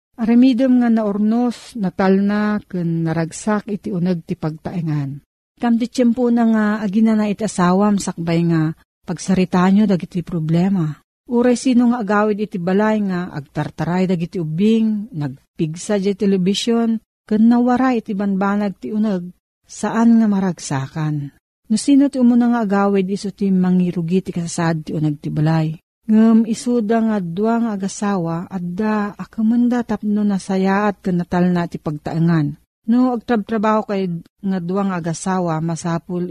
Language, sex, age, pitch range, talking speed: Filipino, female, 40-59, 170-215 Hz, 125 wpm